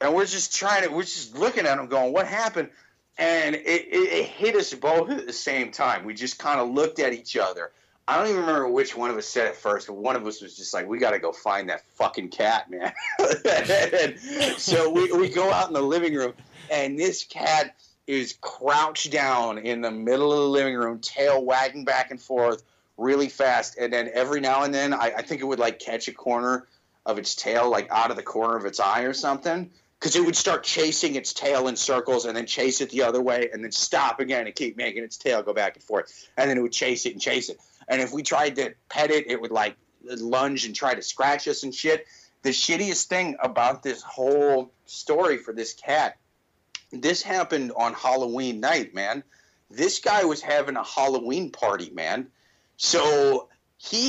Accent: American